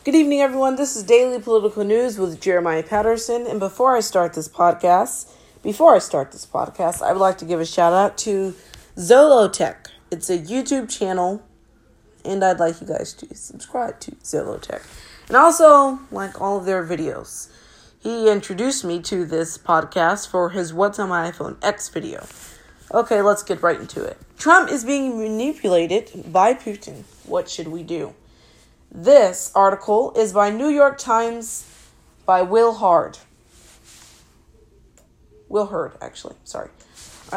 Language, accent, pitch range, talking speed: English, American, 185-260 Hz, 155 wpm